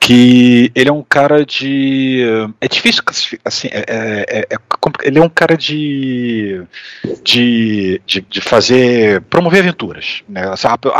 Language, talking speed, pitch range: Portuguese, 145 wpm, 105-150 Hz